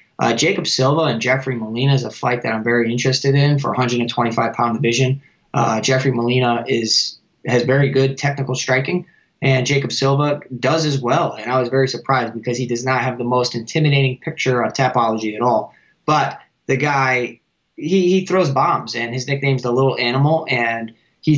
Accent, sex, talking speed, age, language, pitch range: American, male, 185 wpm, 20-39, English, 120-145 Hz